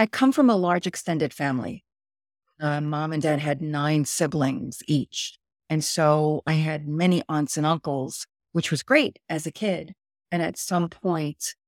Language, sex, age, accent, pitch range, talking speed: English, female, 40-59, American, 145-175 Hz, 170 wpm